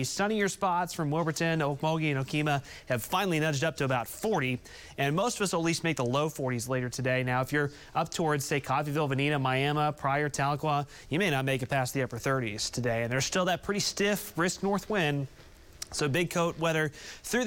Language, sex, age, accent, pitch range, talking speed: English, male, 30-49, American, 135-180 Hz, 215 wpm